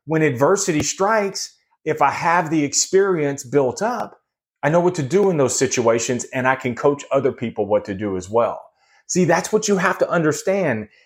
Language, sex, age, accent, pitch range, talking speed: English, male, 30-49, American, 115-165 Hz, 195 wpm